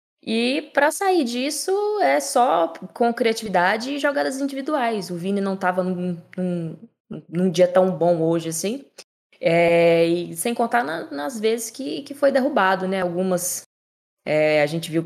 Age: 10-29